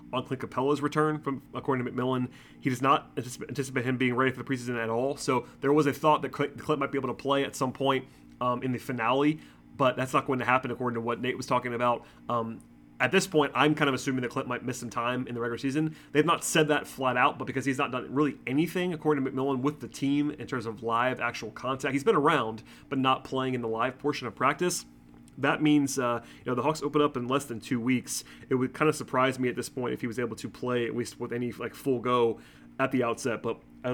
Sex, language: male, English